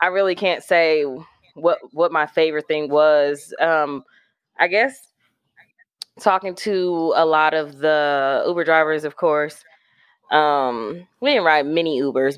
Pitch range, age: 145-185 Hz, 20-39